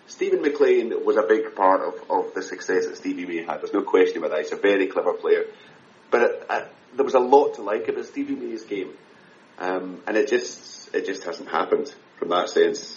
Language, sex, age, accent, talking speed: English, male, 30-49, British, 220 wpm